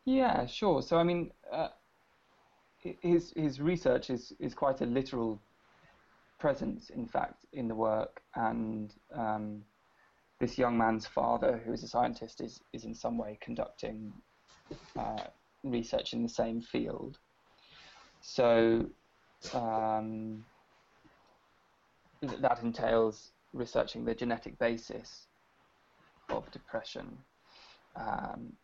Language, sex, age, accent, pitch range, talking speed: English, male, 20-39, British, 115-130 Hz, 115 wpm